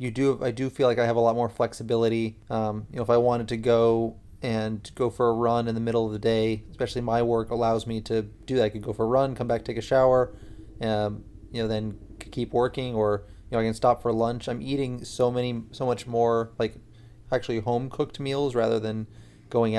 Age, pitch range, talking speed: 30-49, 110-125 Hz, 245 wpm